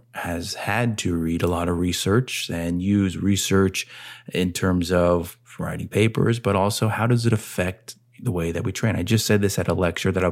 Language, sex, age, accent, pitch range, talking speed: English, male, 20-39, American, 90-115 Hz, 210 wpm